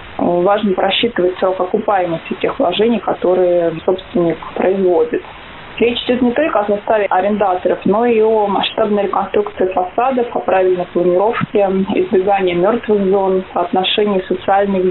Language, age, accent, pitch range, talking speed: Russian, 20-39, native, 185-215 Hz, 120 wpm